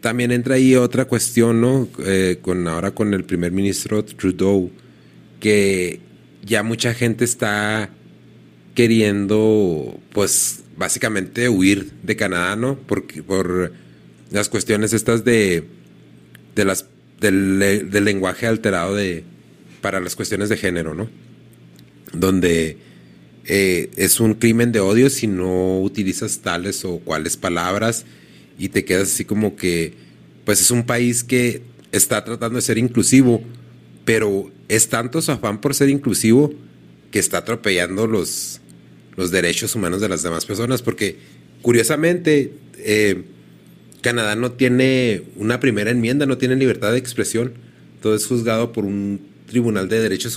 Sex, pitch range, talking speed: male, 95-120 Hz, 140 wpm